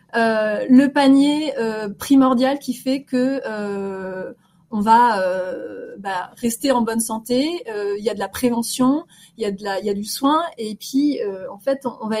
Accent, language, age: French, French, 30-49